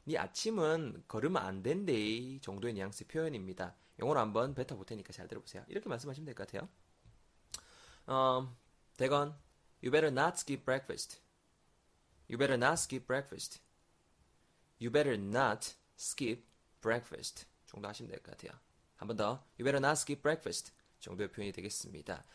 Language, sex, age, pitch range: Korean, male, 20-39, 105-160 Hz